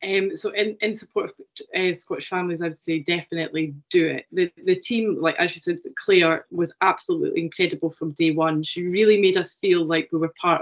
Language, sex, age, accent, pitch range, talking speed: English, female, 20-39, British, 160-215 Hz, 215 wpm